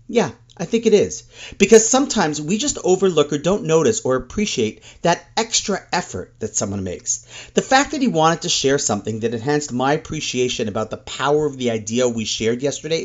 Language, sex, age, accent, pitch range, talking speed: English, male, 40-59, American, 115-195 Hz, 195 wpm